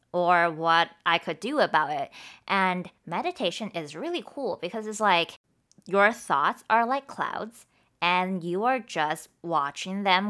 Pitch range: 165-220 Hz